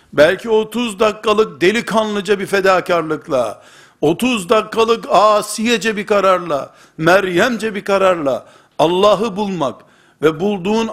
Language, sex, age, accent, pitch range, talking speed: Turkish, male, 60-79, native, 185-220 Hz, 100 wpm